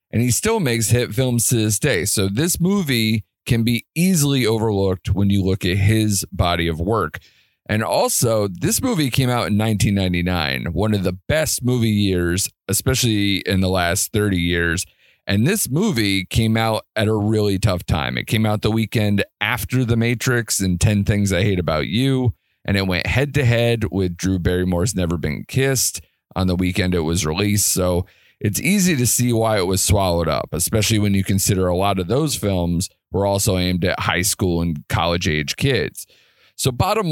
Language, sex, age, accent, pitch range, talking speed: English, male, 30-49, American, 90-120 Hz, 190 wpm